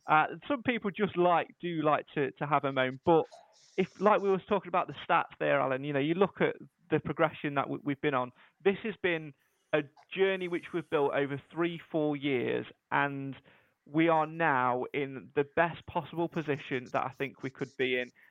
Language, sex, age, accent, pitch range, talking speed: English, male, 20-39, British, 145-180 Hz, 205 wpm